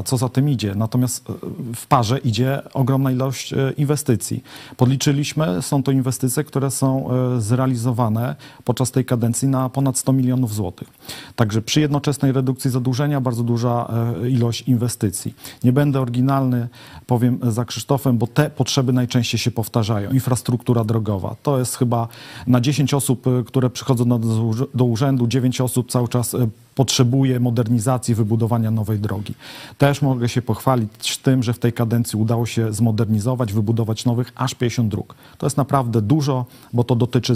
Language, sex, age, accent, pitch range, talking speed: Polish, male, 40-59, native, 115-130 Hz, 150 wpm